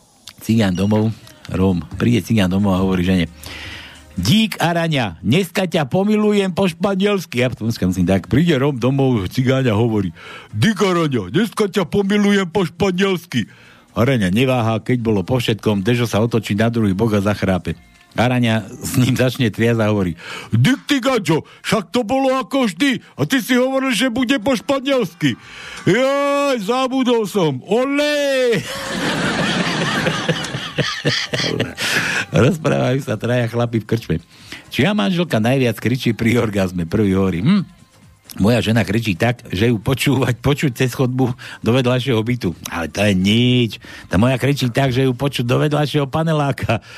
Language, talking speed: Slovak, 145 wpm